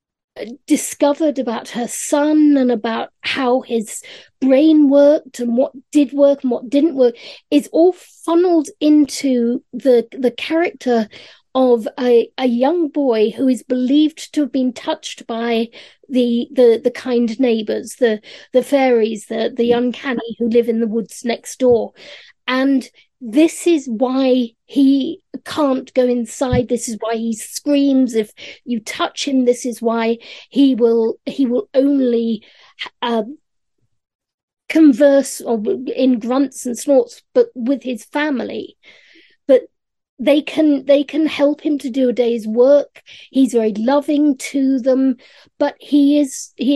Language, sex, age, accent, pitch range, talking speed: English, female, 40-59, British, 240-290 Hz, 145 wpm